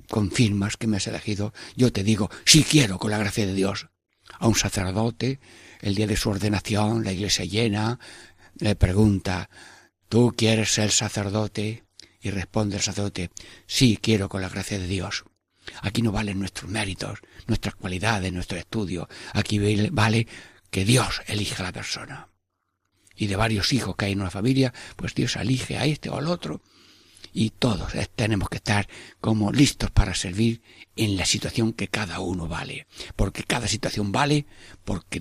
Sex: male